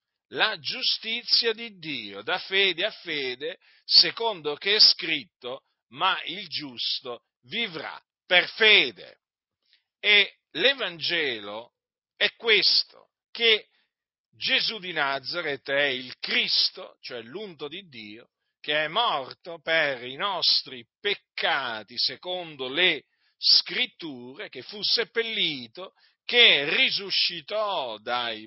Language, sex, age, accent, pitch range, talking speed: Italian, male, 40-59, native, 140-210 Hz, 105 wpm